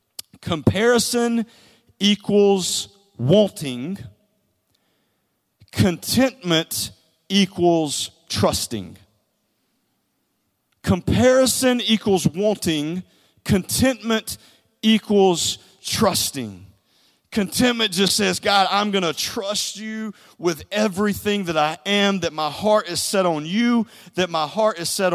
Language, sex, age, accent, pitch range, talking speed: English, male, 40-59, American, 175-220 Hz, 90 wpm